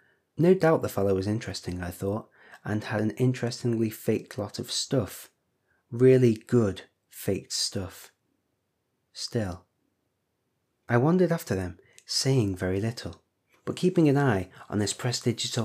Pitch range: 100-135 Hz